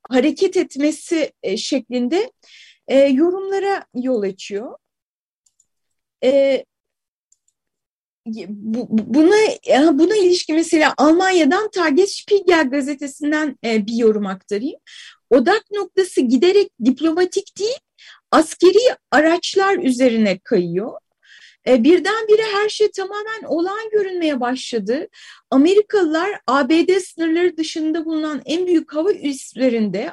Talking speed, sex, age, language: 80 wpm, female, 30-49, Turkish